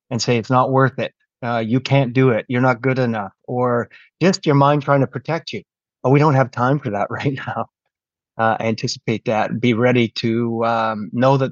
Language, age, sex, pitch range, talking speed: English, 30-49, male, 110-130 Hz, 215 wpm